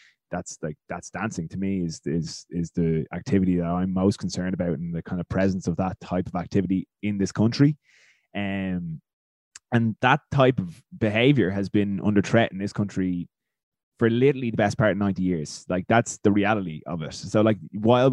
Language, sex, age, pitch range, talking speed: English, male, 20-39, 95-110 Hz, 195 wpm